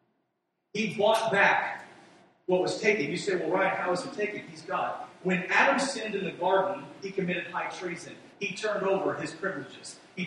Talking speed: 185 wpm